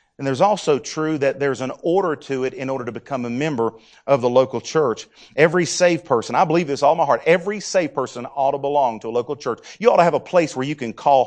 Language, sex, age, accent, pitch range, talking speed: English, male, 40-59, American, 115-170 Hz, 260 wpm